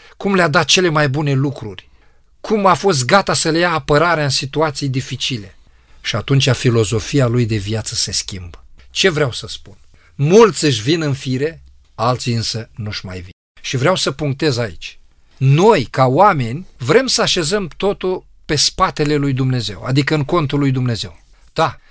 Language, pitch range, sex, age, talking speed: Romanian, 115-160 Hz, male, 40-59, 170 wpm